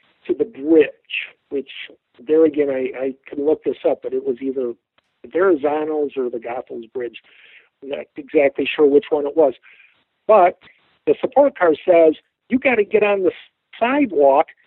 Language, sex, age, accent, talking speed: English, male, 60-79, American, 170 wpm